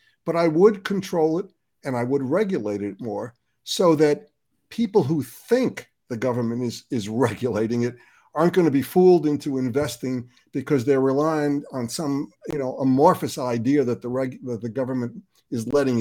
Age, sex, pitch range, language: 60-79, male, 125-165 Hz, English